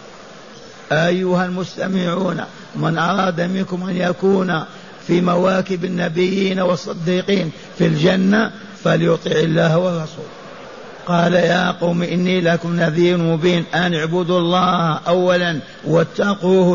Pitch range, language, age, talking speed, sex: 155-180 Hz, Arabic, 50-69, 100 wpm, male